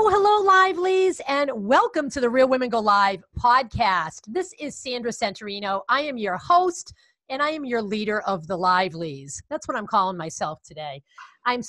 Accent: American